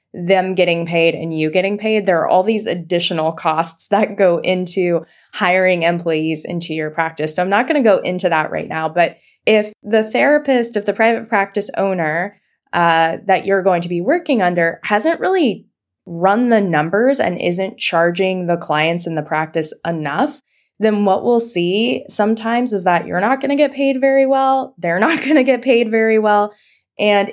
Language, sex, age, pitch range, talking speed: English, female, 20-39, 165-210 Hz, 190 wpm